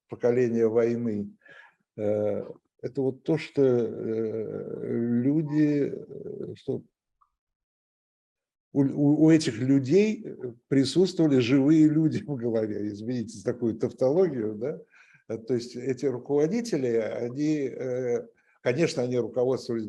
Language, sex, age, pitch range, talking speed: Russian, male, 60-79, 120-155 Hz, 90 wpm